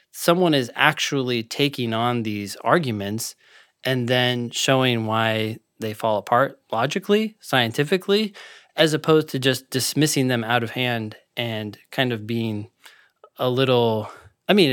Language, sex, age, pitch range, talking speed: English, male, 20-39, 110-135 Hz, 135 wpm